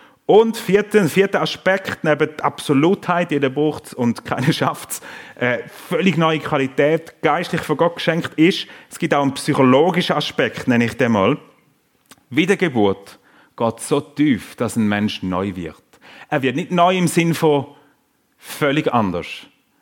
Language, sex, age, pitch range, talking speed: German, male, 30-49, 120-155 Hz, 155 wpm